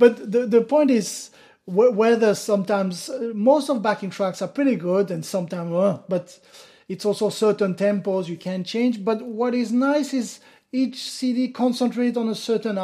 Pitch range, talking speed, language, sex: 195-245 Hz, 170 wpm, English, male